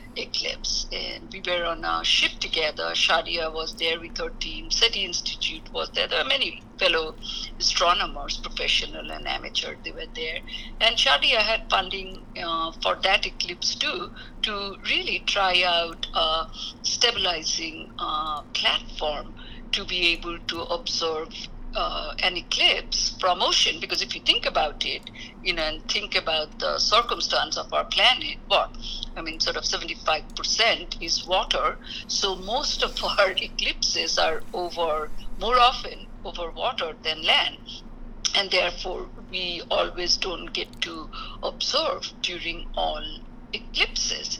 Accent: Indian